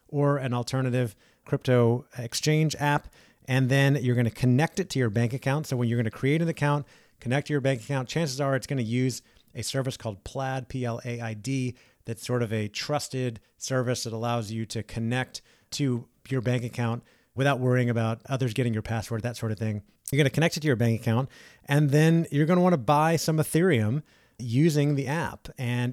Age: 30-49